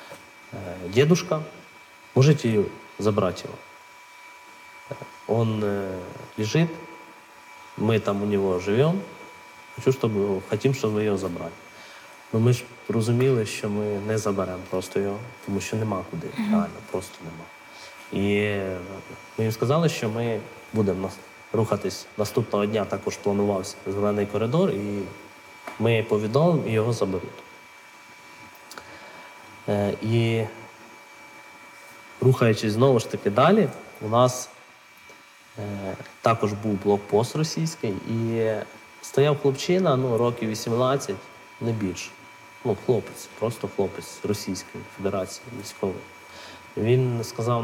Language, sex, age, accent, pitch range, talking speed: Ukrainian, male, 20-39, native, 100-125 Hz, 105 wpm